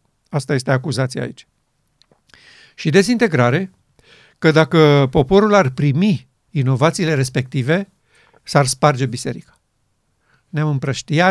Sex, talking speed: male, 95 wpm